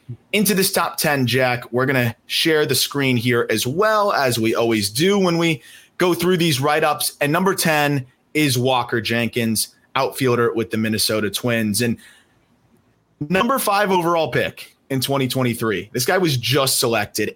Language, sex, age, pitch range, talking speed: English, male, 30-49, 125-165 Hz, 165 wpm